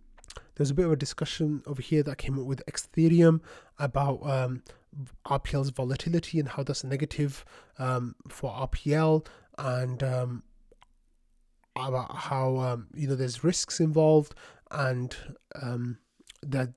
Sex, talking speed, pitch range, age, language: male, 130 wpm, 130-150 Hz, 20-39, English